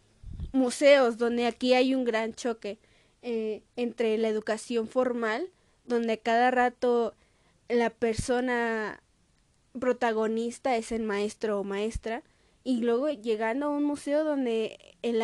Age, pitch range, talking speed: 20-39, 225-270 Hz, 120 wpm